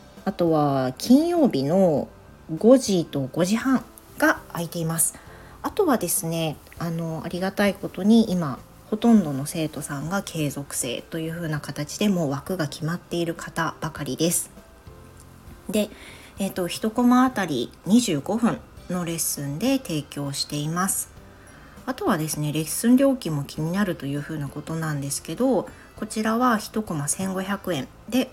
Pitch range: 145-195 Hz